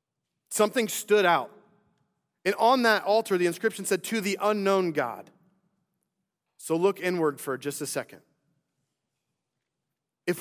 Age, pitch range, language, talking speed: 30-49, 150-195 Hz, English, 125 wpm